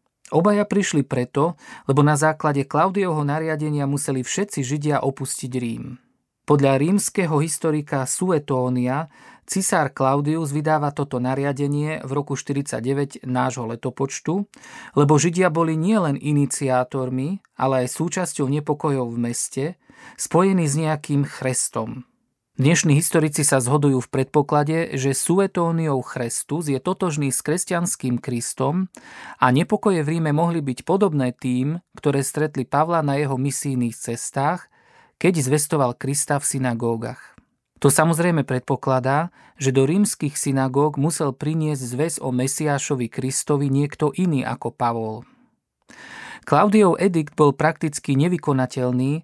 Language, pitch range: Slovak, 135-160 Hz